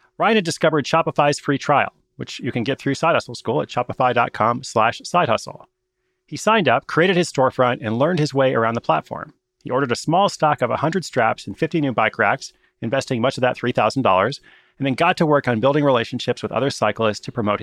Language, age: English, 30-49